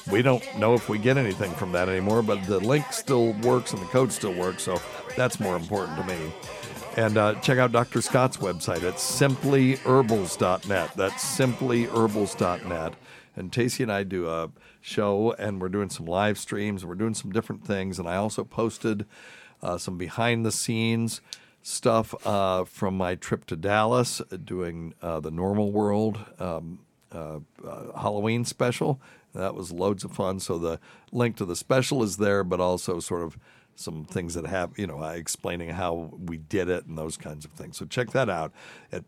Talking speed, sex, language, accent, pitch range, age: 185 wpm, male, English, American, 85-115 Hz, 60-79